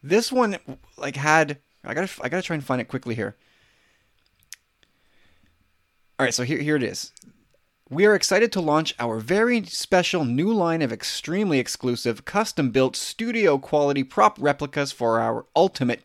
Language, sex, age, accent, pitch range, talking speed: English, male, 30-49, American, 125-170 Hz, 150 wpm